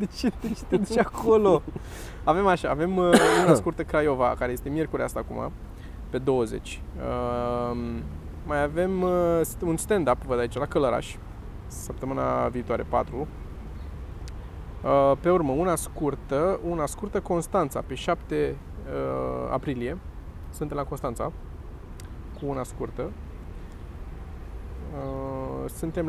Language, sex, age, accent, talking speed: Romanian, male, 20-39, native, 105 wpm